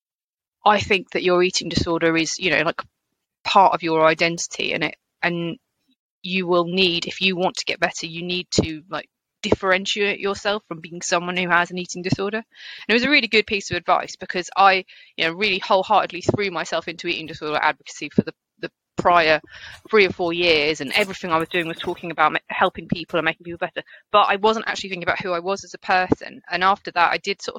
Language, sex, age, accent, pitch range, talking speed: English, female, 20-39, British, 160-195 Hz, 220 wpm